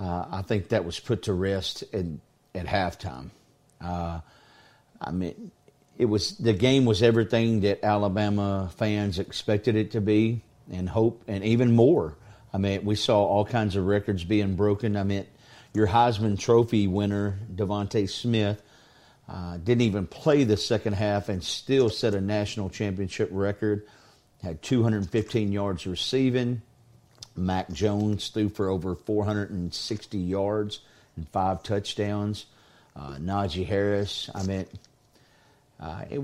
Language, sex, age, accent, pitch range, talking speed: English, male, 50-69, American, 100-115 Hz, 140 wpm